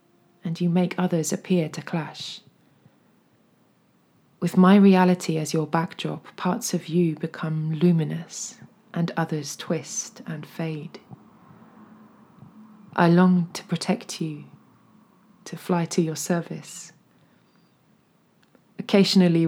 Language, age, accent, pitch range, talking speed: English, 20-39, British, 165-190 Hz, 105 wpm